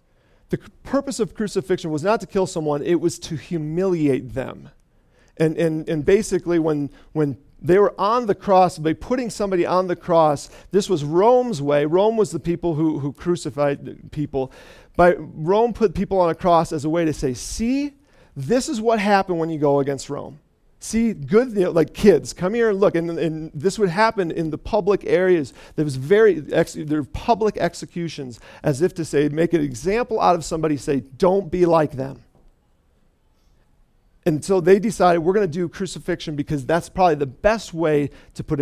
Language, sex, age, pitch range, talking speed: English, male, 40-59, 145-190 Hz, 190 wpm